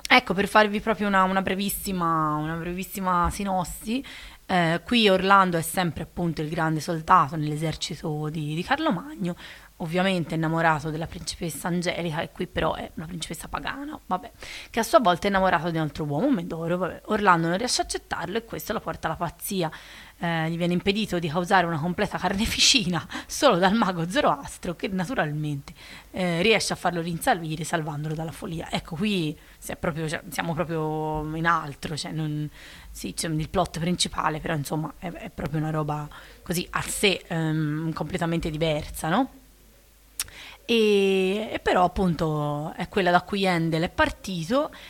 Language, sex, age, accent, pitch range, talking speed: Italian, female, 30-49, native, 160-195 Hz, 165 wpm